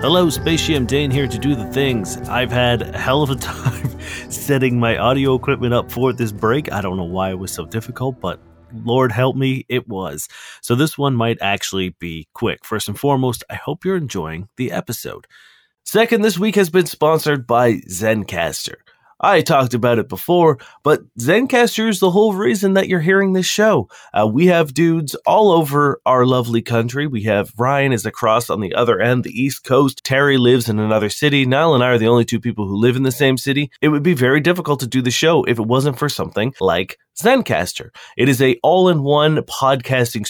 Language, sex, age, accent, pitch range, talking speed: English, male, 30-49, American, 110-150 Hz, 205 wpm